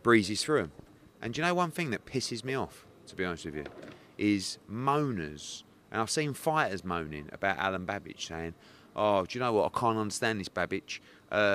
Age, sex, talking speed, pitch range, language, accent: 30-49, male, 205 wpm, 95-125 Hz, English, British